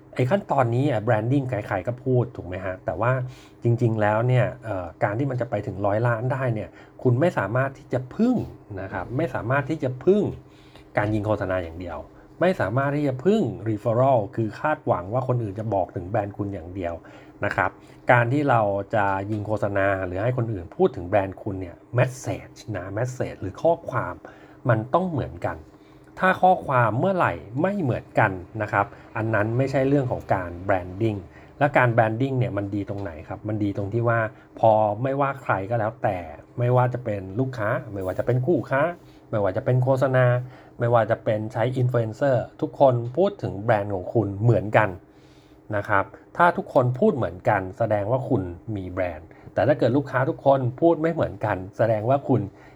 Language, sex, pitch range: English, male, 100-130 Hz